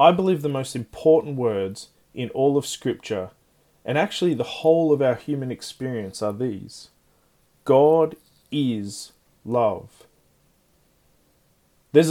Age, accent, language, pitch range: 20-39, Australian, English, 120-155 Hz